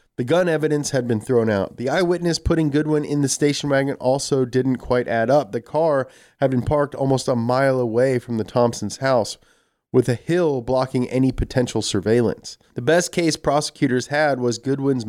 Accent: American